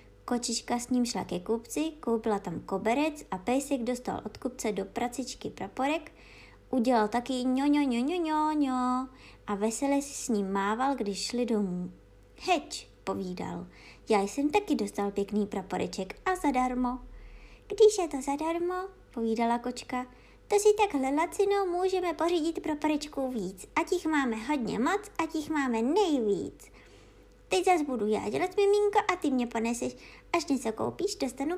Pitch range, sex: 220-310 Hz, male